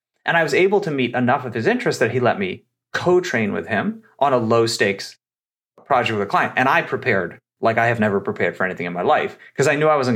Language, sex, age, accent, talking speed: English, male, 30-49, American, 260 wpm